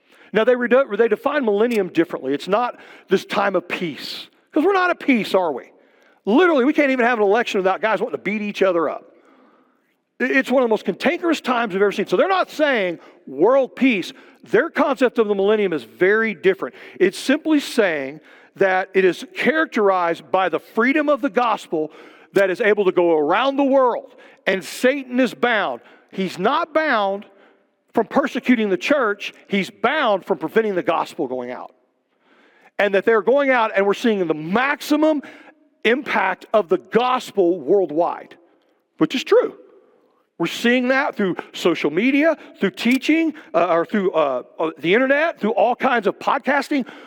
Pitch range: 195-275 Hz